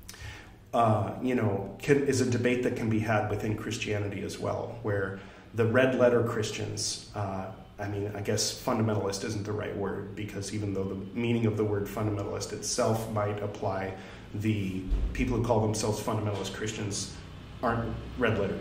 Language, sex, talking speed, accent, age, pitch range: English, male, 160 wpm, American, 30-49, 105-125 Hz